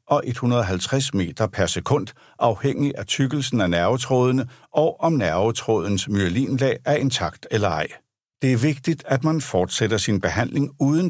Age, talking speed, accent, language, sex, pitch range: 60-79, 145 wpm, native, Danish, male, 105-140 Hz